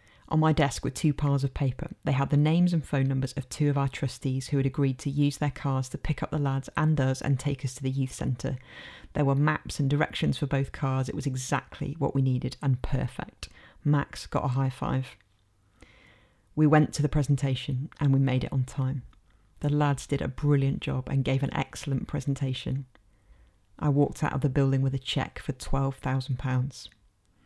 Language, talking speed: English, 210 wpm